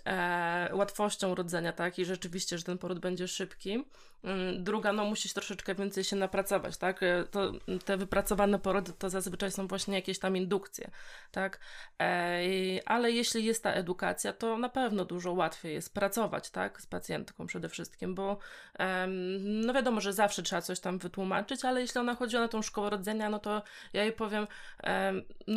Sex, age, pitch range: female, 20-39, 190-220 Hz